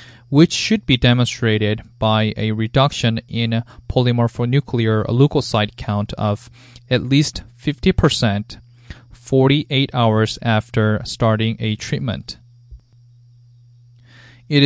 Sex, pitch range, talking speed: male, 110-125 Hz, 90 wpm